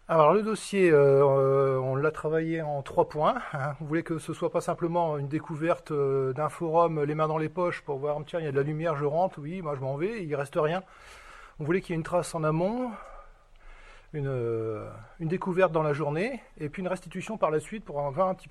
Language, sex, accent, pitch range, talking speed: French, male, French, 145-180 Hz, 245 wpm